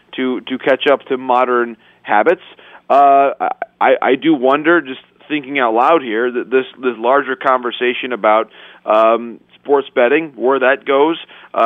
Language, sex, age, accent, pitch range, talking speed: English, male, 40-59, American, 120-145 Hz, 150 wpm